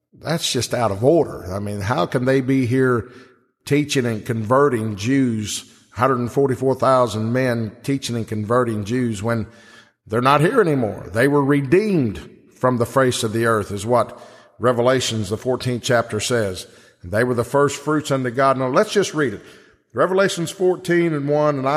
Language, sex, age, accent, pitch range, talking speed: English, male, 50-69, American, 125-155 Hz, 165 wpm